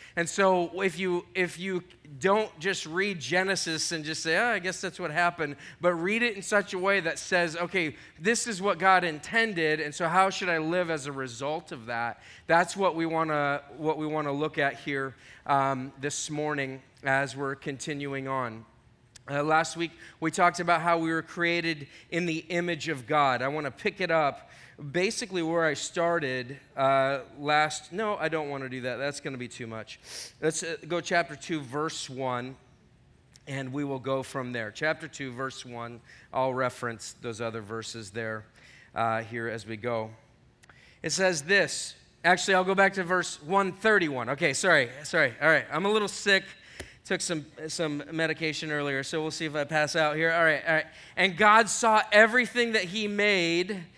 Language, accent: English, American